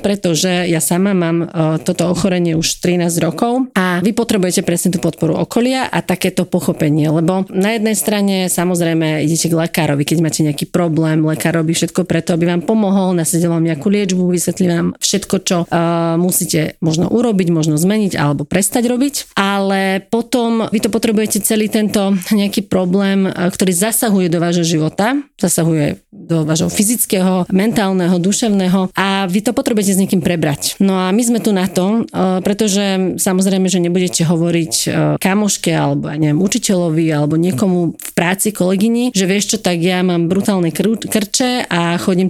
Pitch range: 170-205 Hz